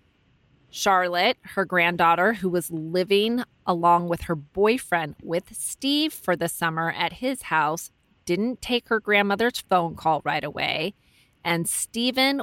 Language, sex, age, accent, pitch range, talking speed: English, female, 30-49, American, 155-200 Hz, 135 wpm